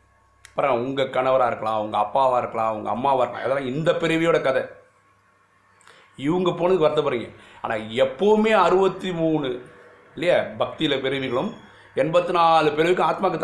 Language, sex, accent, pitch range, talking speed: Tamil, male, native, 110-175 Hz, 125 wpm